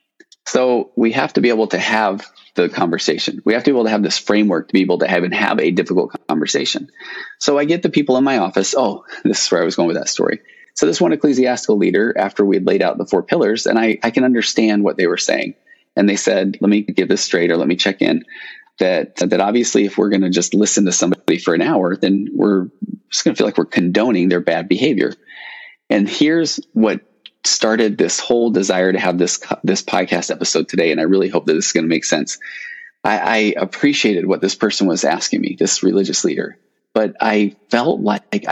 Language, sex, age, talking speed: English, male, 30-49, 230 wpm